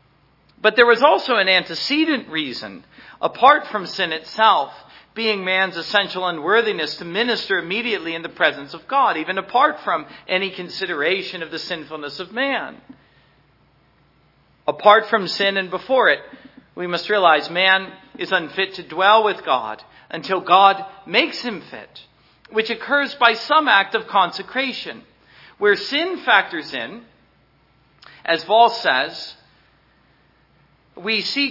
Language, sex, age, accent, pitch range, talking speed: English, male, 50-69, American, 165-225 Hz, 135 wpm